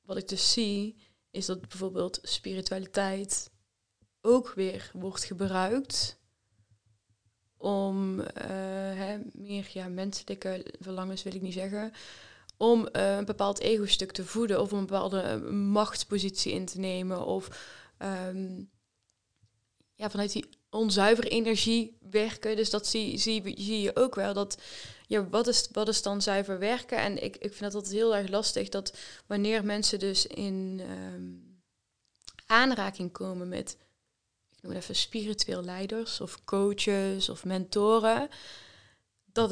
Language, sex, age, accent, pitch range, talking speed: Dutch, female, 20-39, Dutch, 185-215 Hz, 140 wpm